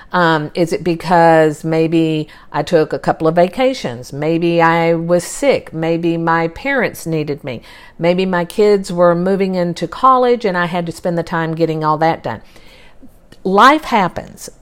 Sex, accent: female, American